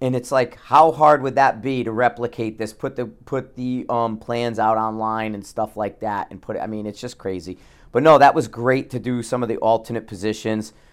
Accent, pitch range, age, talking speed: American, 105-125 Hz, 40-59, 235 wpm